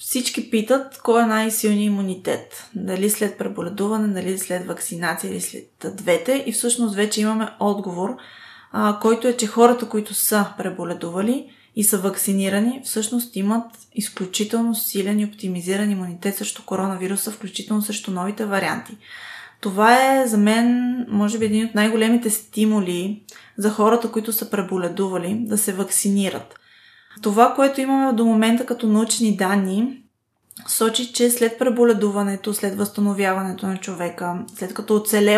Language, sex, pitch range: Bulgarian, female, 195-230 Hz